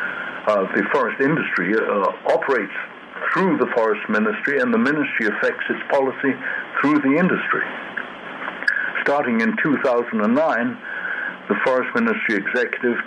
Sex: male